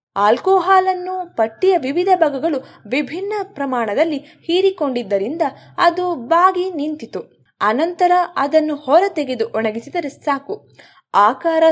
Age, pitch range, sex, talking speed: 20-39, 240-355 Hz, female, 85 wpm